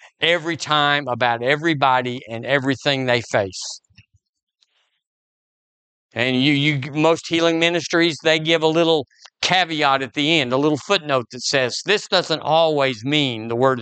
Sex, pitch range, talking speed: male, 115-150 Hz, 145 wpm